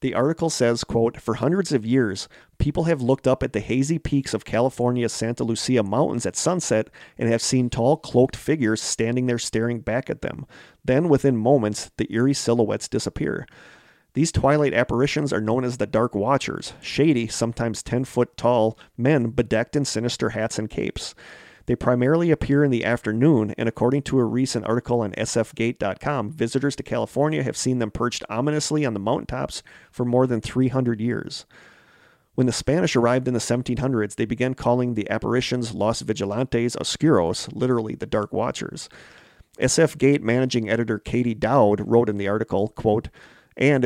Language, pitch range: English, 110-130 Hz